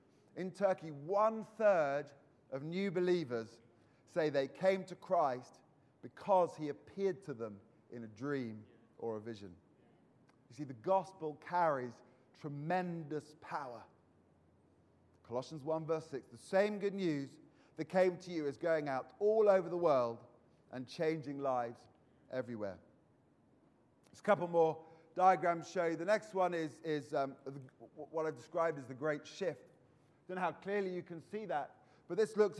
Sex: male